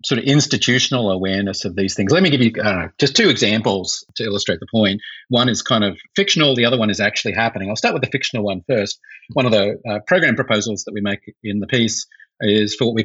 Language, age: English, 40-59